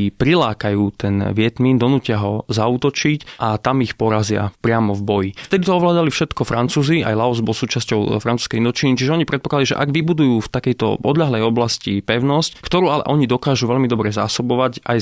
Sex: male